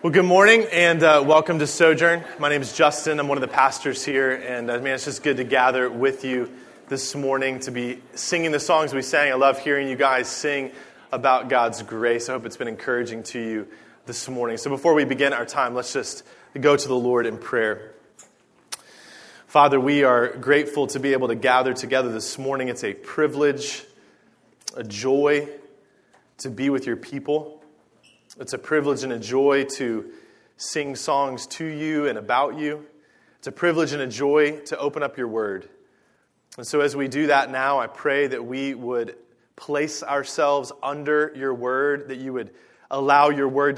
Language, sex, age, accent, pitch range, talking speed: English, male, 20-39, American, 130-150 Hz, 190 wpm